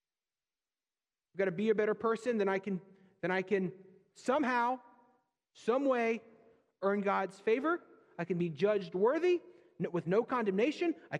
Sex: male